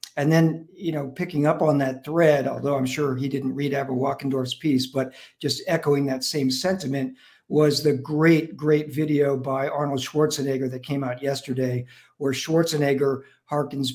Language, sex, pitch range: English, male, 135-150 Hz